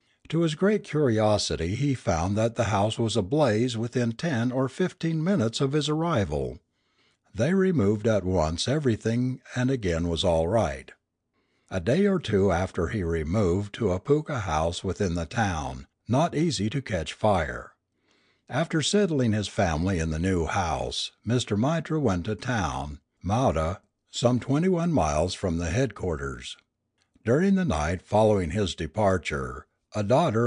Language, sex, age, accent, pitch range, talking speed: English, male, 60-79, American, 90-130 Hz, 150 wpm